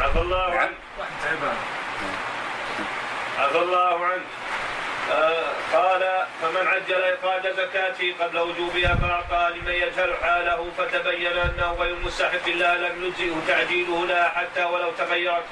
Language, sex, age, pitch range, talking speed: Arabic, male, 30-49, 175-185 Hz, 115 wpm